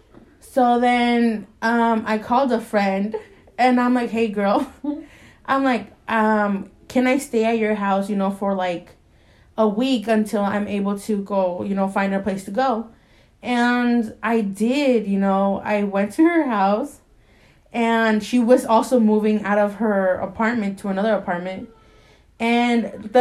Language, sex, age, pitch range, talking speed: English, female, 20-39, 205-250 Hz, 160 wpm